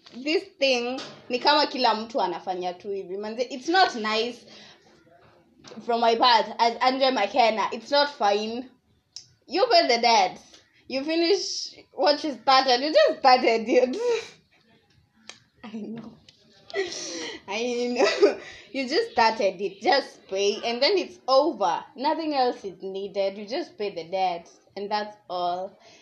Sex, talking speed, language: female, 120 wpm, English